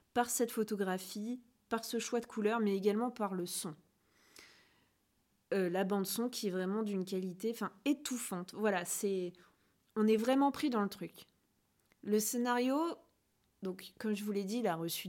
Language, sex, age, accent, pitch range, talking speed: French, female, 20-39, French, 195-245 Hz, 170 wpm